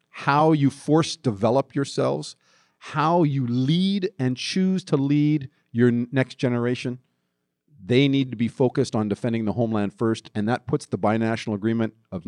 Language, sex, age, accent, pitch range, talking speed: English, male, 50-69, American, 105-135 Hz, 155 wpm